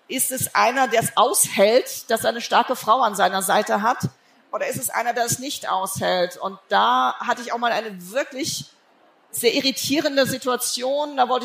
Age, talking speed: 40-59, 190 wpm